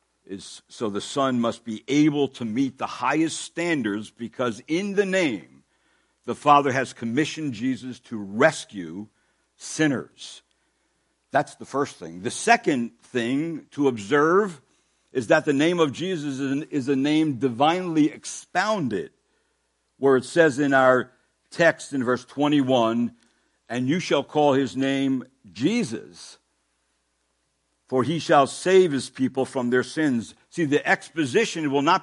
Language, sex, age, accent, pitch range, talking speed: English, male, 60-79, American, 120-155 Hz, 140 wpm